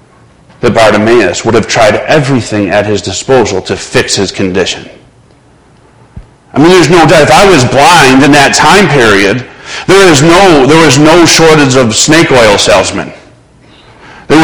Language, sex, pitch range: English, male, 115-150 Hz